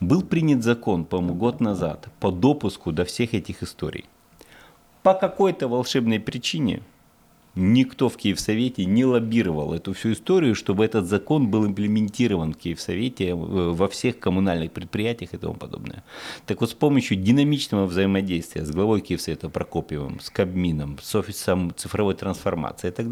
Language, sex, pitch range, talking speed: Russian, male, 90-120 Hz, 145 wpm